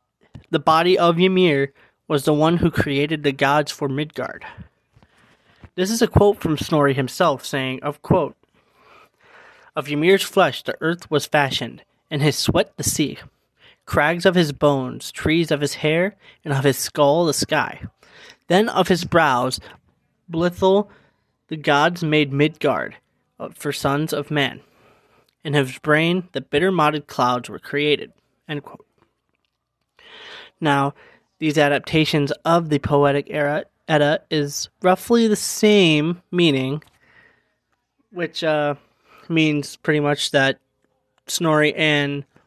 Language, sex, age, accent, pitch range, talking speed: English, male, 20-39, American, 145-170 Hz, 135 wpm